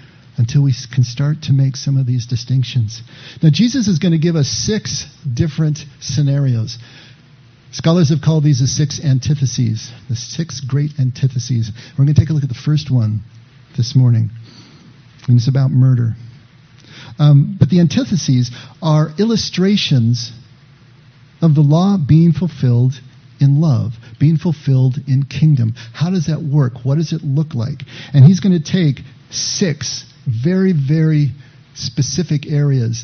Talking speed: 150 wpm